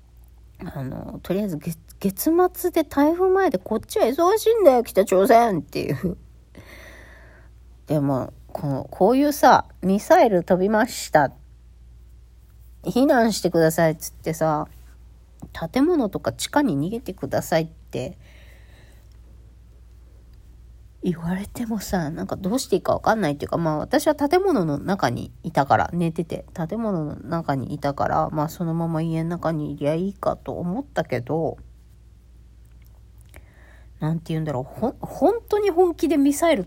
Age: 40-59